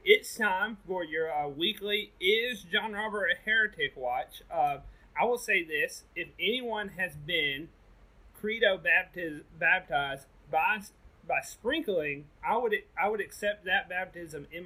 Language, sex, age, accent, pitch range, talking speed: English, male, 30-49, American, 170-210 Hz, 145 wpm